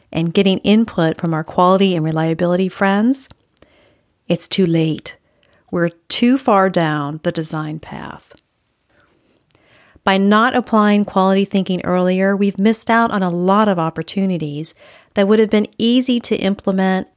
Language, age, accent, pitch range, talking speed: English, 50-69, American, 175-220 Hz, 140 wpm